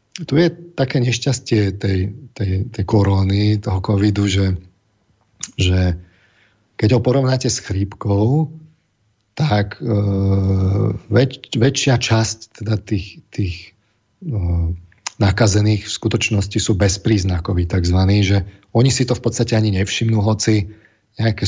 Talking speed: 120 wpm